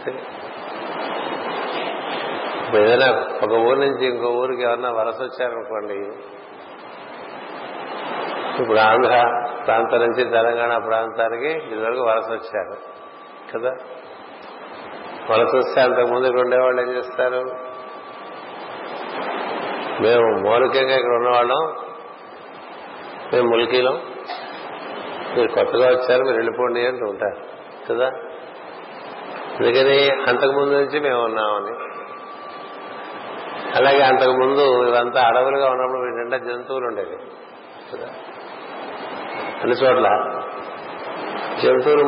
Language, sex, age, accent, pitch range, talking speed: Telugu, male, 50-69, native, 120-135 Hz, 80 wpm